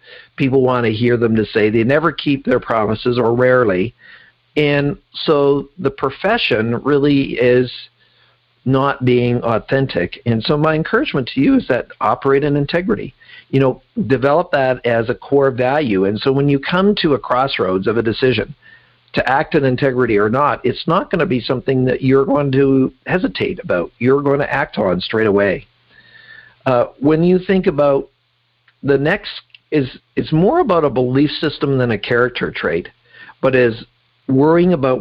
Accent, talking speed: American, 170 wpm